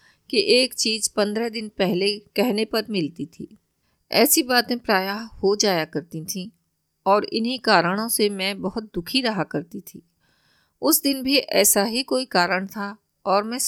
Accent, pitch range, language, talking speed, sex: native, 190-230 Hz, Hindi, 160 wpm, female